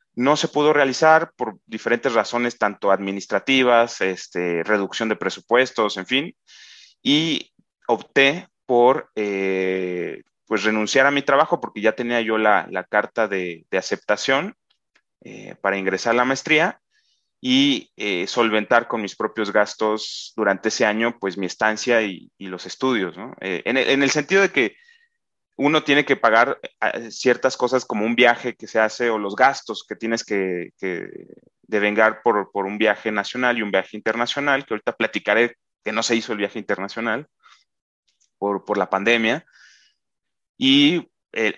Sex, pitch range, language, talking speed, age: male, 100-125 Hz, Spanish, 160 wpm, 30-49